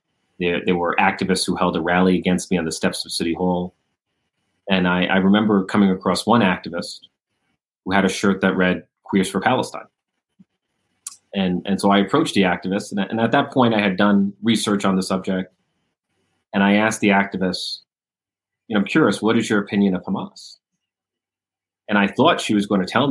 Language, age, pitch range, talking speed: English, 30-49, 95-100 Hz, 195 wpm